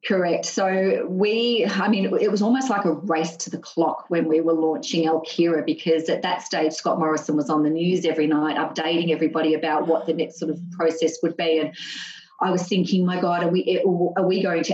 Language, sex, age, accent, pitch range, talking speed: English, female, 30-49, Australian, 155-185 Hz, 220 wpm